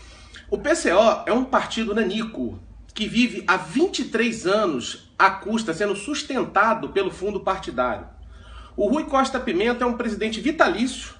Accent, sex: Brazilian, male